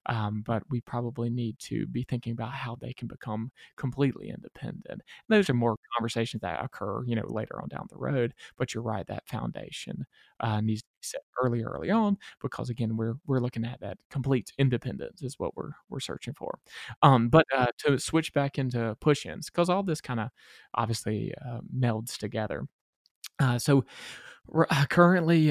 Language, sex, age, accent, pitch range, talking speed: English, male, 20-39, American, 115-140 Hz, 185 wpm